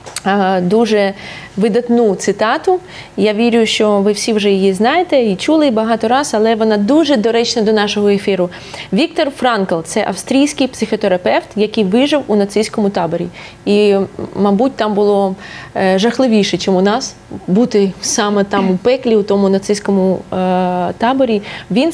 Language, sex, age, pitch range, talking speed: Russian, female, 20-39, 200-275 Hz, 140 wpm